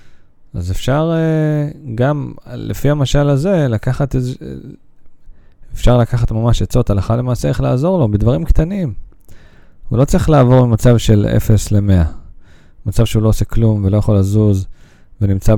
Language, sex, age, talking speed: Hebrew, male, 20-39, 140 wpm